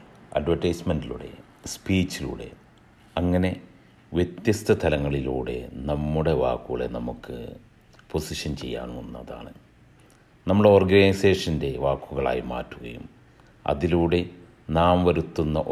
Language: English